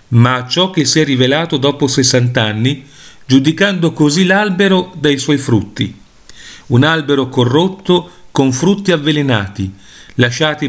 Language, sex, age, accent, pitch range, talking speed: Italian, male, 40-59, native, 125-170 Hz, 125 wpm